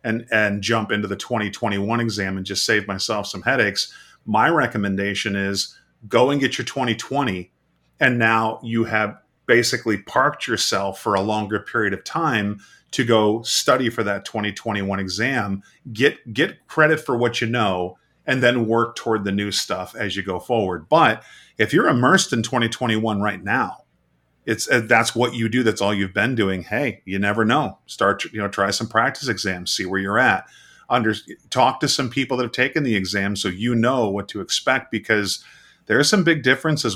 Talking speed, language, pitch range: 185 wpm, English, 100-120 Hz